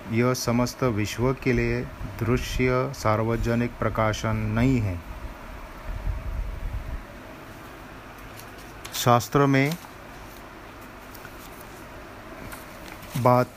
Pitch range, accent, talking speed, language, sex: 115-140 Hz, native, 55 wpm, Hindi, male